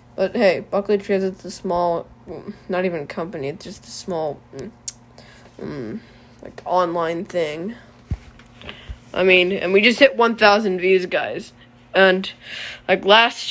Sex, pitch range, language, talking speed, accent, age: female, 175-205 Hz, English, 140 wpm, American, 20-39